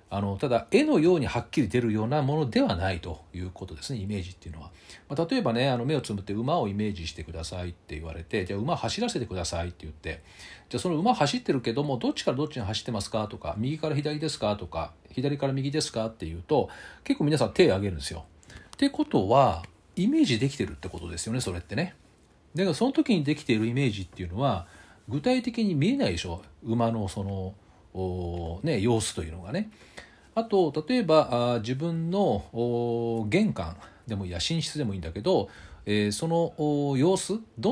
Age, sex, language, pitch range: 40-59, male, Japanese, 90-155 Hz